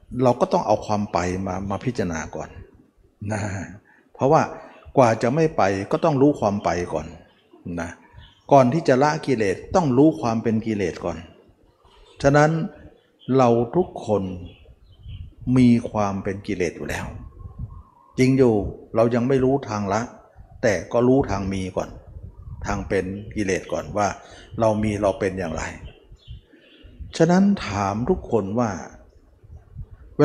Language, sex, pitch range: Thai, male, 95-125 Hz